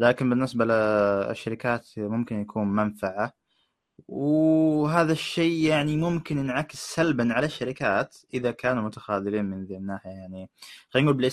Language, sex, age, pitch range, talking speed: Arabic, male, 20-39, 105-140 Hz, 125 wpm